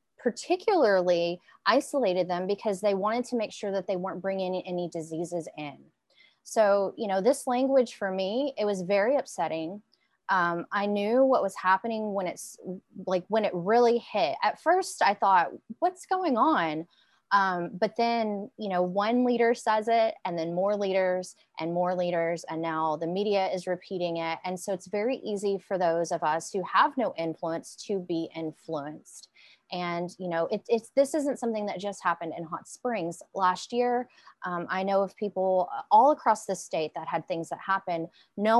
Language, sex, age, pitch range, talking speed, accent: English, female, 20-39, 180-235 Hz, 180 wpm, American